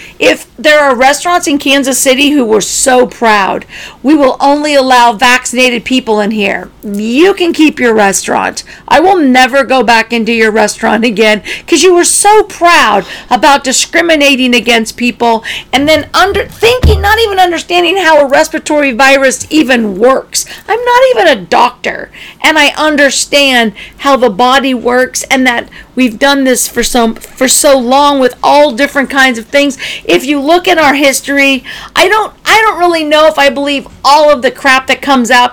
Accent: American